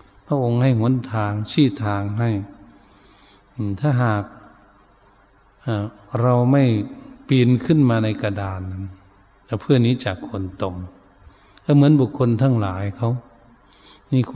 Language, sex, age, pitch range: Thai, male, 60-79, 100-120 Hz